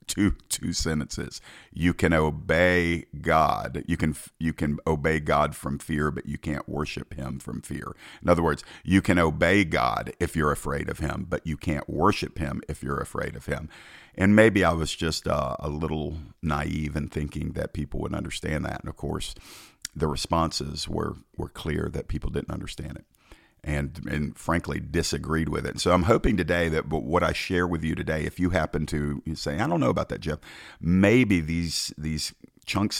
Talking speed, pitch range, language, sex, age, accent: 190 wpm, 75-85 Hz, English, male, 50-69, American